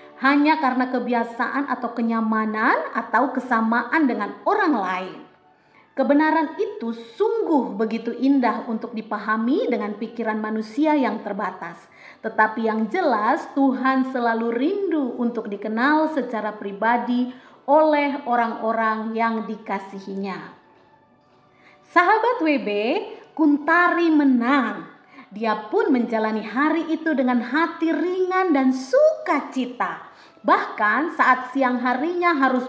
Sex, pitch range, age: female, 230-300 Hz, 30-49